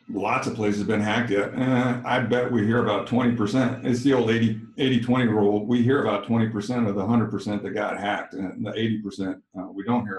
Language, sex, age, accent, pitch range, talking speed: English, male, 50-69, American, 110-140 Hz, 205 wpm